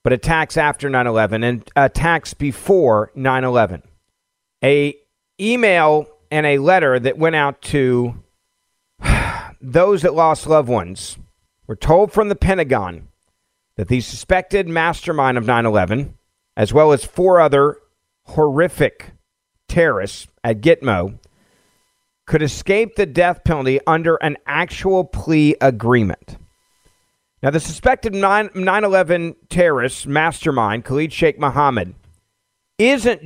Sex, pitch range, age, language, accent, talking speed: male, 125-175 Hz, 50-69, English, American, 110 wpm